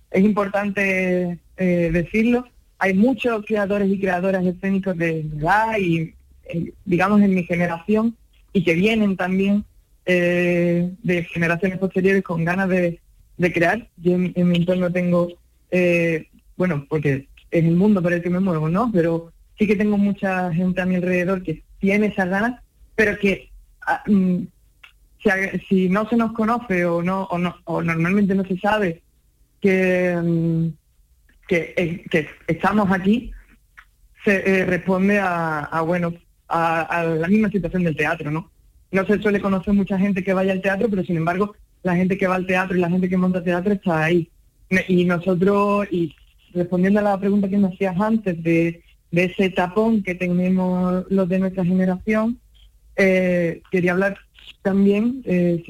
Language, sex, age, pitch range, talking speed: Spanish, female, 20-39, 175-200 Hz, 160 wpm